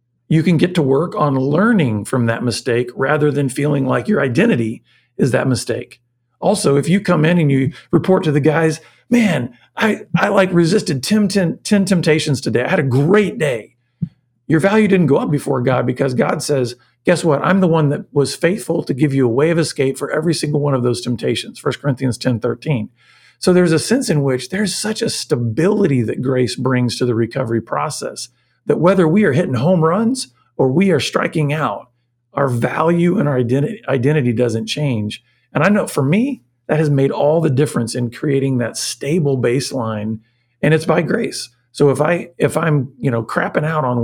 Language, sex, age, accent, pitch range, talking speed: English, male, 50-69, American, 125-165 Hz, 205 wpm